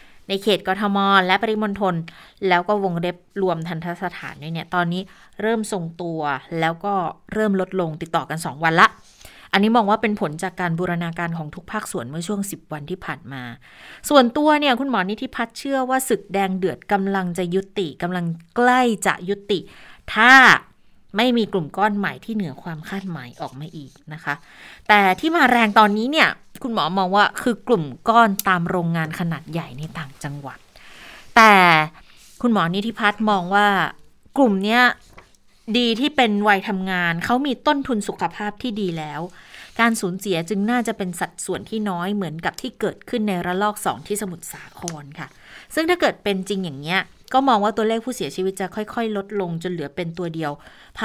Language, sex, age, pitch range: Thai, female, 20-39, 170-215 Hz